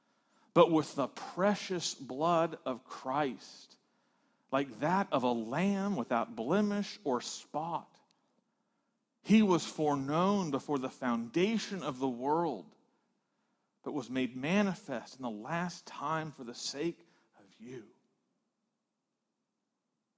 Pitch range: 155-225 Hz